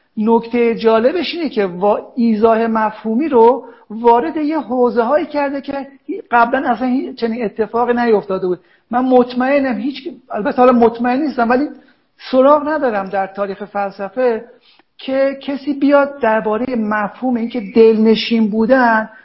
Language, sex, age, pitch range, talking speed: Persian, male, 50-69, 210-255 Hz, 130 wpm